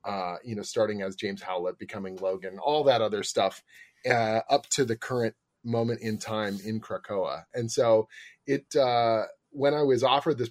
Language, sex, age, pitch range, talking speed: English, male, 30-49, 100-120 Hz, 185 wpm